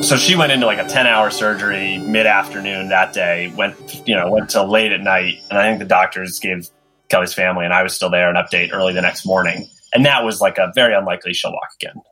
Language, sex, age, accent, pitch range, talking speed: English, male, 30-49, American, 95-120 Hz, 240 wpm